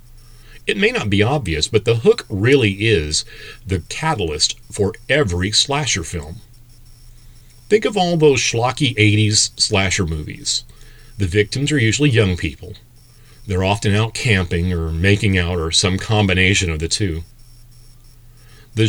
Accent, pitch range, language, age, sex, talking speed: American, 95-120 Hz, English, 40-59, male, 140 wpm